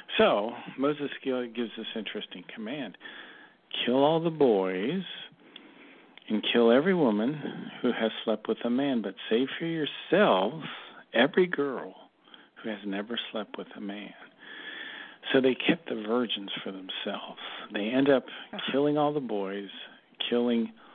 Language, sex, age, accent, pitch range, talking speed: English, male, 50-69, American, 105-140 Hz, 140 wpm